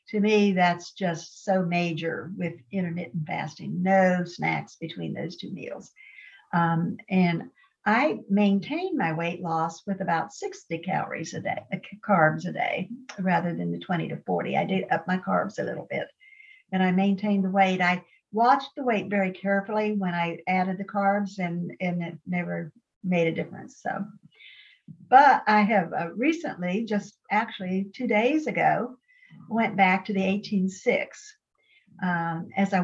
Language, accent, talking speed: English, American, 160 wpm